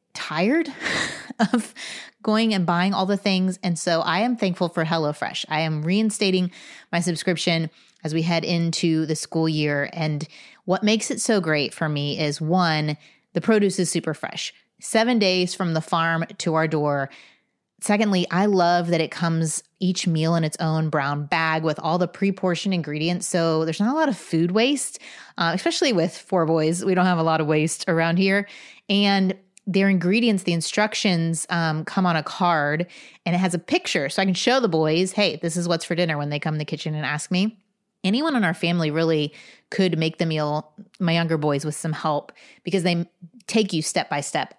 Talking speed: 195 wpm